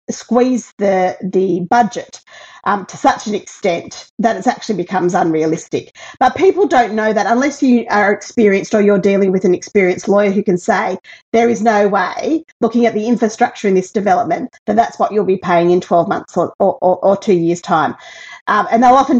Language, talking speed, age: English, 195 wpm, 40-59